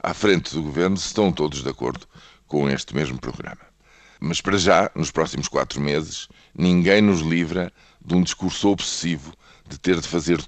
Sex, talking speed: male, 170 wpm